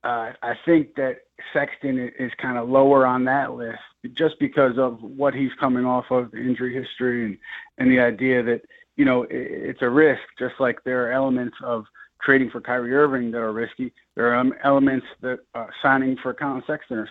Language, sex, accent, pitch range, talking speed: English, male, American, 125-140 Hz, 205 wpm